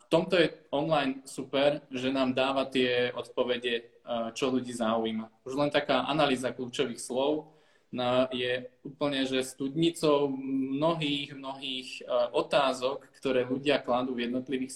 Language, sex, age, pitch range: Slovak, male, 20-39, 120-135 Hz